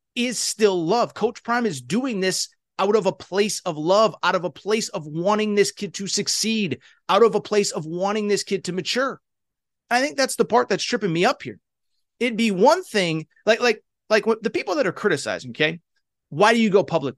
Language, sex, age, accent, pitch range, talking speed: English, male, 30-49, American, 175-240 Hz, 220 wpm